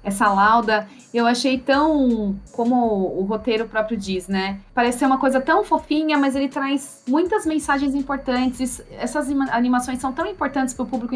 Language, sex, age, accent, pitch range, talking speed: Portuguese, female, 20-39, Brazilian, 195-260 Hz, 165 wpm